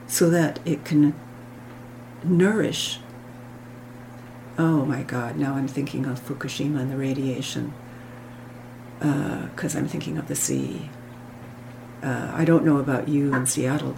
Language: English